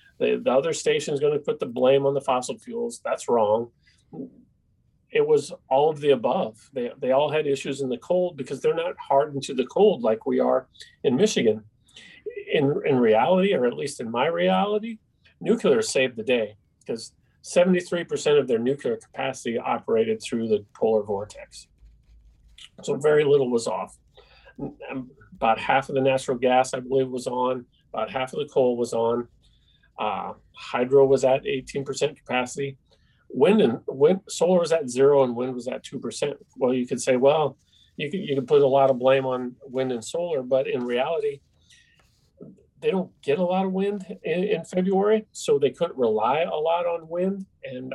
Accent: American